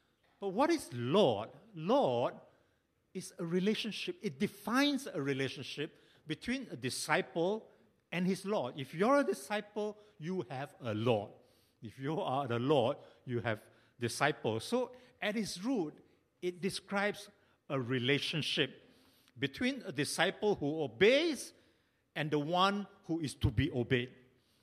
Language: English